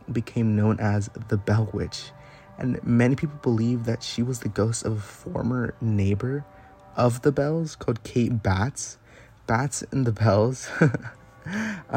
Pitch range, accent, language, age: 110-125 Hz, American, English, 20-39